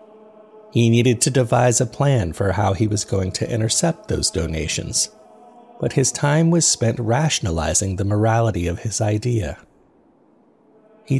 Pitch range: 100-130 Hz